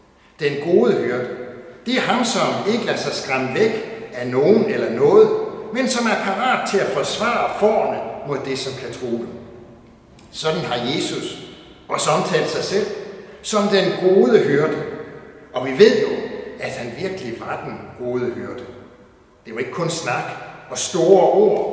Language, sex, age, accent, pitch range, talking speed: Danish, male, 60-79, native, 130-215 Hz, 165 wpm